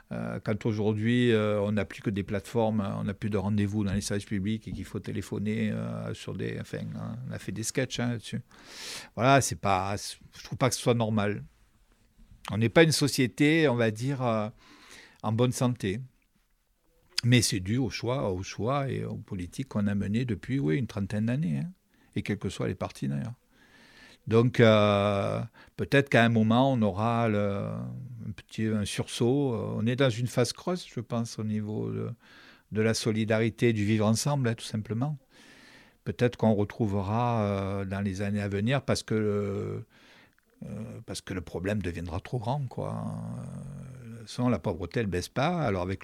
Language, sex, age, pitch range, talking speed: French, male, 60-79, 100-125 Hz, 180 wpm